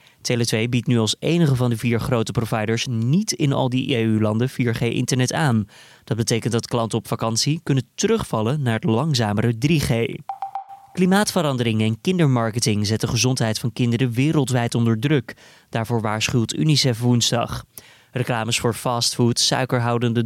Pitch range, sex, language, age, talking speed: 115-145 Hz, male, Dutch, 20-39, 140 wpm